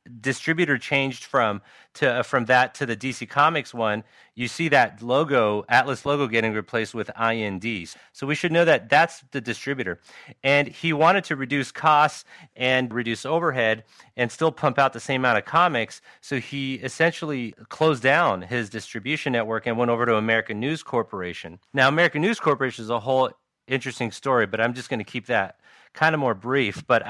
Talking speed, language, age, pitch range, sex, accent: 185 wpm, English, 30-49, 115-140 Hz, male, American